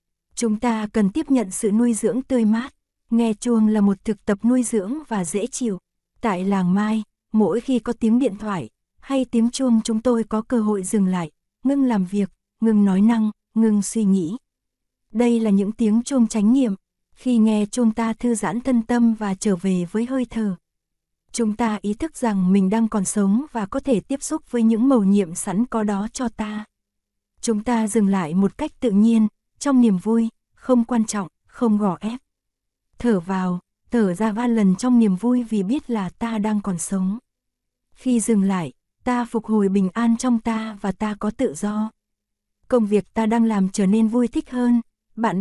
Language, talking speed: Vietnamese, 200 wpm